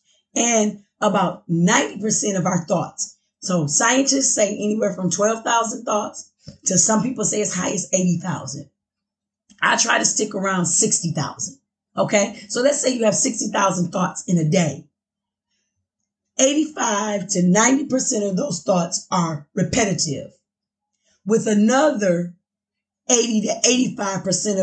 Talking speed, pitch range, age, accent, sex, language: 125 wpm, 180-230 Hz, 40-59, American, female, English